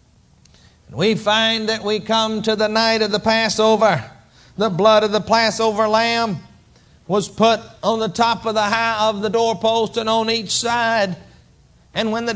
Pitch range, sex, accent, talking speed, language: 210-235 Hz, male, American, 170 wpm, English